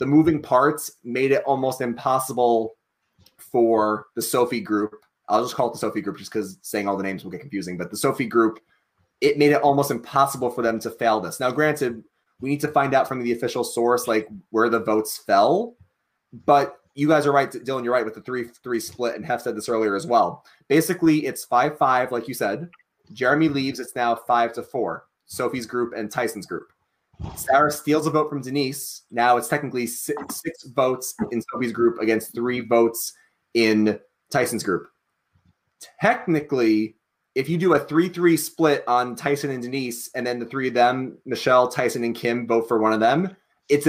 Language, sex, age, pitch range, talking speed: English, male, 20-39, 115-140 Hz, 200 wpm